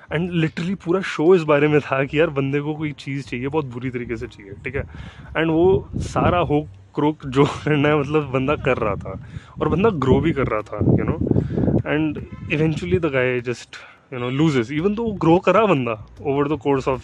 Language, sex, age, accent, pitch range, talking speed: Hindi, male, 20-39, native, 125-165 Hz, 210 wpm